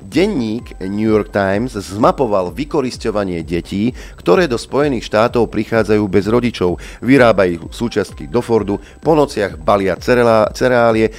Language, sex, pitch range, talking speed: Slovak, male, 95-115 Hz, 120 wpm